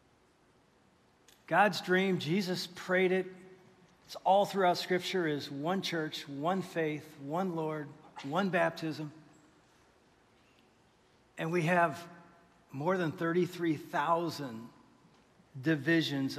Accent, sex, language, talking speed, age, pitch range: American, male, English, 95 wpm, 50-69, 165-225 Hz